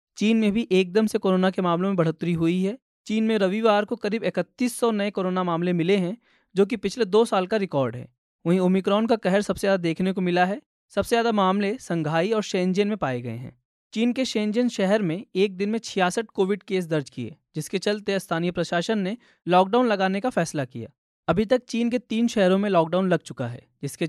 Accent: native